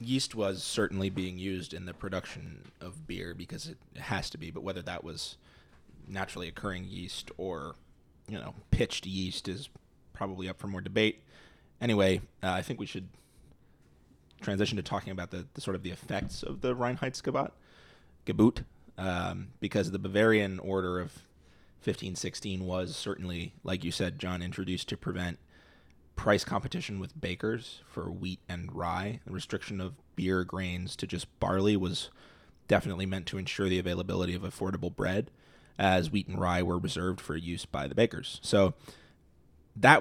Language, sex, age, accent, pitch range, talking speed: English, male, 20-39, American, 90-100 Hz, 160 wpm